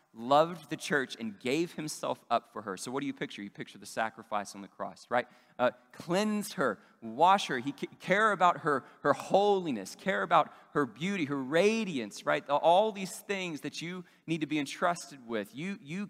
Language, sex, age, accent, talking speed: English, male, 30-49, American, 200 wpm